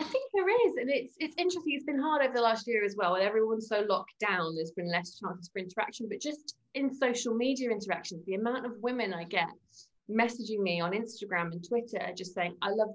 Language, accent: English, British